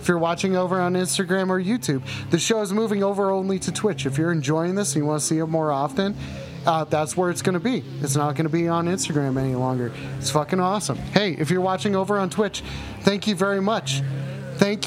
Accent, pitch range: American, 150-200 Hz